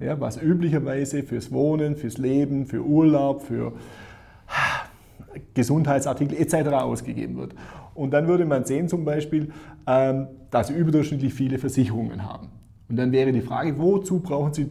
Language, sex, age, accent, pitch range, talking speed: German, male, 30-49, German, 125-155 Hz, 135 wpm